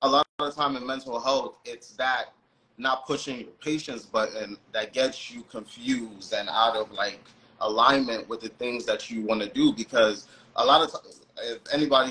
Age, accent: 30-49, American